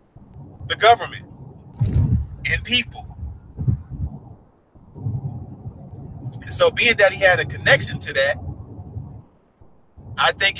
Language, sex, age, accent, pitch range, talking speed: English, male, 40-59, American, 120-150 Hz, 90 wpm